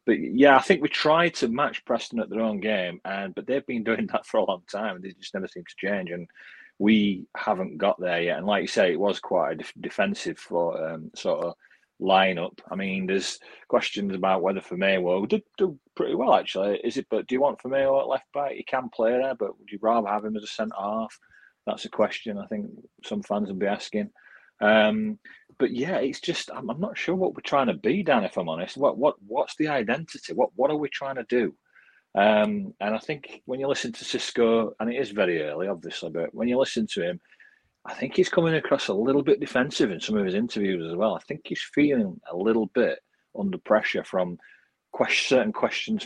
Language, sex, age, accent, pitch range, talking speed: English, male, 30-49, British, 100-150 Hz, 230 wpm